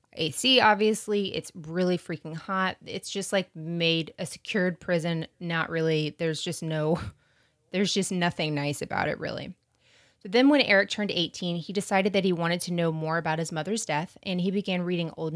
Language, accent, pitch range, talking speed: English, American, 160-195 Hz, 190 wpm